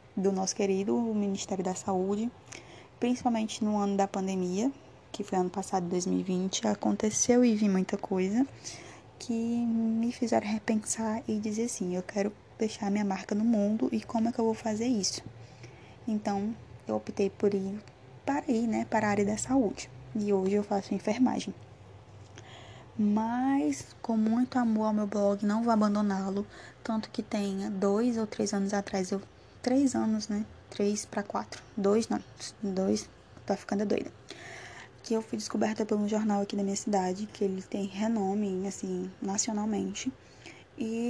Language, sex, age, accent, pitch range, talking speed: Portuguese, female, 10-29, Brazilian, 195-230 Hz, 155 wpm